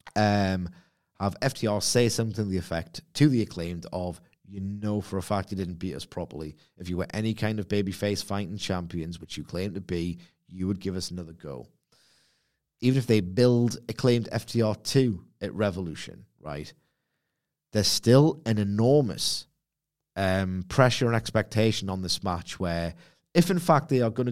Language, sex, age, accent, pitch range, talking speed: English, male, 30-49, British, 95-115 Hz, 170 wpm